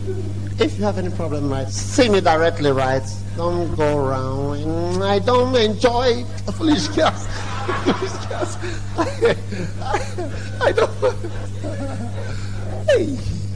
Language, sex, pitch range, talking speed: English, male, 100-105 Hz, 105 wpm